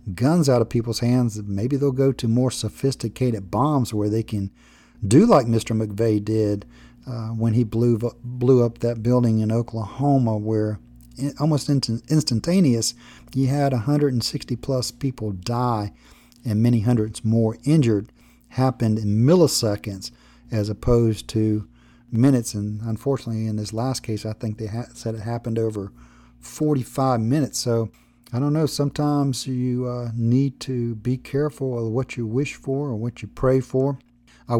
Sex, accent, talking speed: male, American, 155 wpm